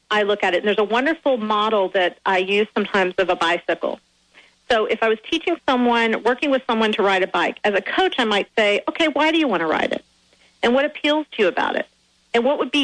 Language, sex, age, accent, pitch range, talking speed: English, female, 40-59, American, 200-255 Hz, 250 wpm